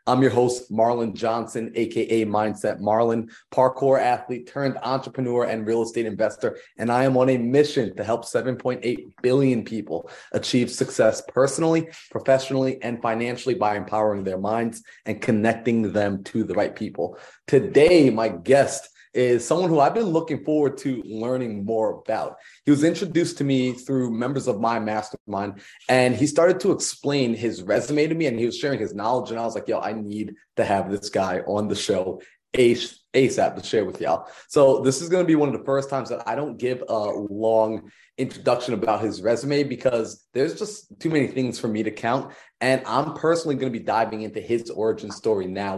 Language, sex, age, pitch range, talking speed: English, male, 30-49, 110-130 Hz, 190 wpm